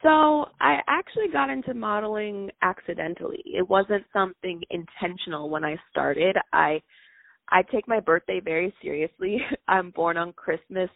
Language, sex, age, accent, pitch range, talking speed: English, female, 20-39, American, 165-195 Hz, 135 wpm